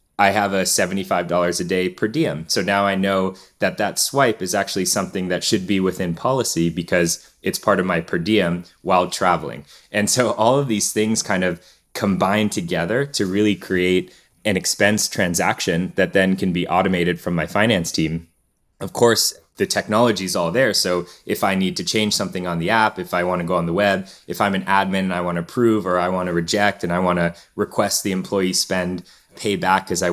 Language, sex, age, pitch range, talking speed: English, male, 20-39, 90-100 Hz, 205 wpm